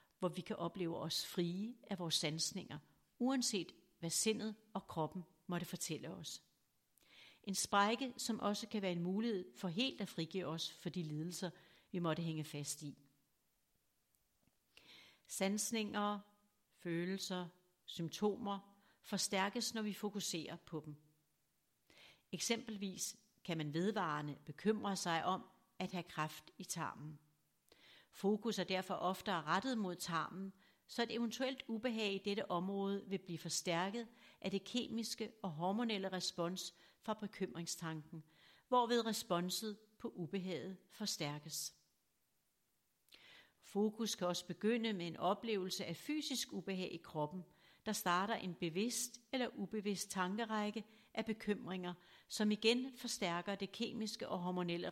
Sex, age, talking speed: female, 60-79, 130 wpm